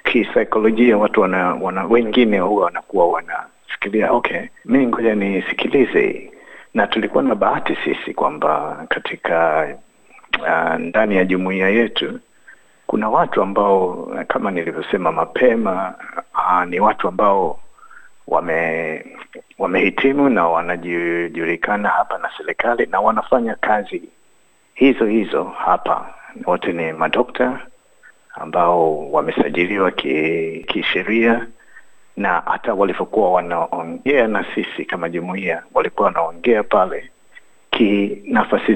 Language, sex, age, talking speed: Swahili, male, 60-79, 105 wpm